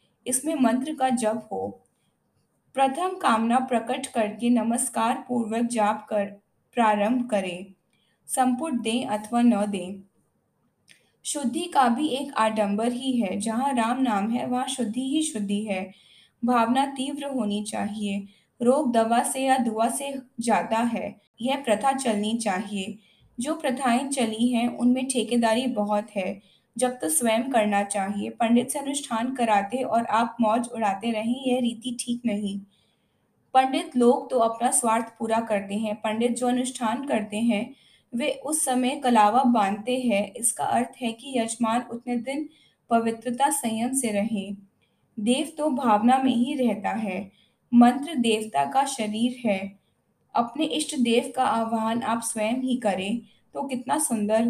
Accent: native